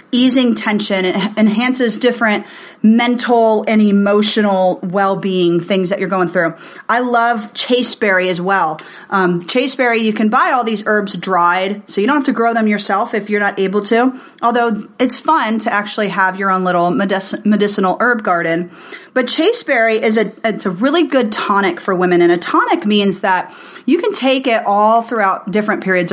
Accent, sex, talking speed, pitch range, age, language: American, female, 180 wpm, 190-240 Hz, 30-49, English